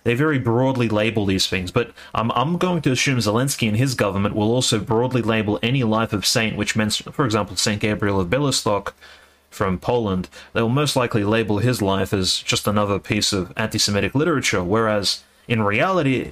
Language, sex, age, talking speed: English, male, 30-49, 190 wpm